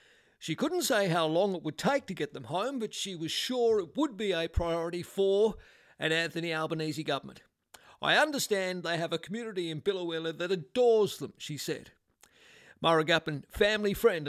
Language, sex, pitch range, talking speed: English, male, 160-205 Hz, 175 wpm